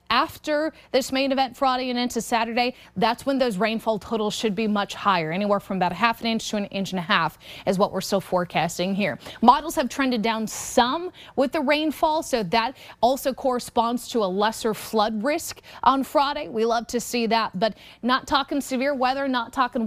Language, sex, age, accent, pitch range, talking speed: English, female, 20-39, American, 200-260 Hz, 200 wpm